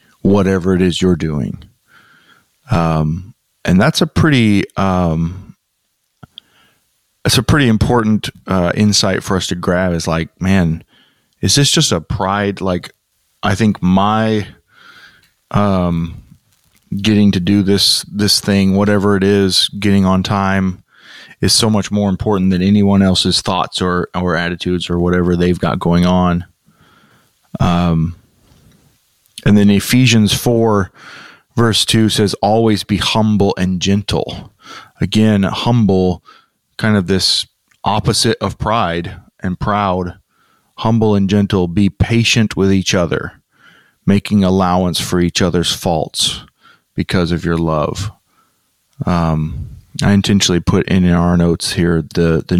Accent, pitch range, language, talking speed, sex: American, 90-105 Hz, English, 130 wpm, male